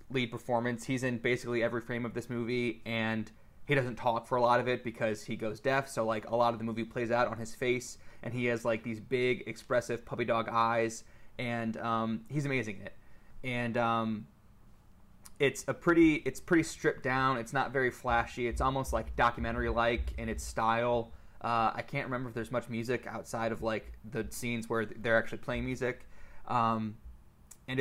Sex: male